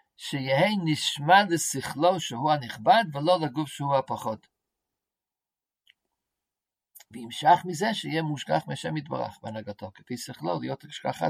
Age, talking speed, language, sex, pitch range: 50-69, 105 wpm, Hebrew, male, 130-185 Hz